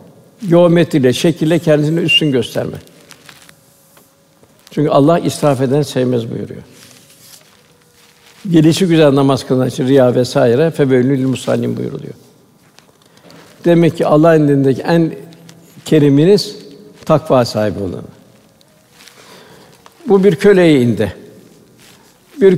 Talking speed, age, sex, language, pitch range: 95 wpm, 60-79, male, Turkish, 135-175 Hz